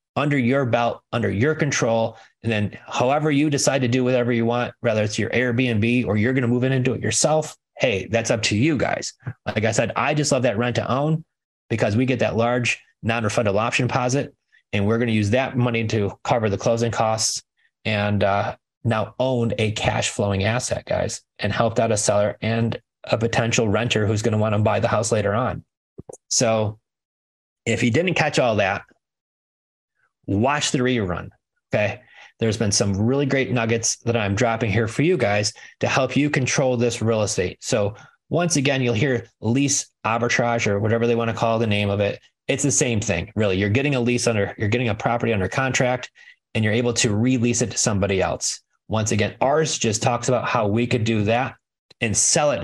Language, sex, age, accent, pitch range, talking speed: English, male, 30-49, American, 105-125 Hz, 200 wpm